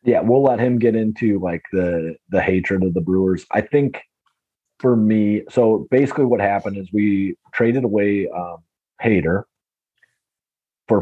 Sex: male